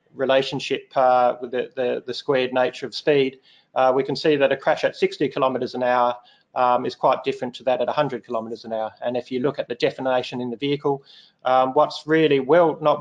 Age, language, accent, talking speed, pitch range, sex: 30-49, English, Australian, 220 wpm, 125-150 Hz, male